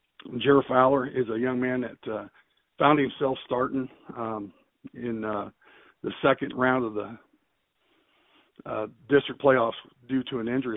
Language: English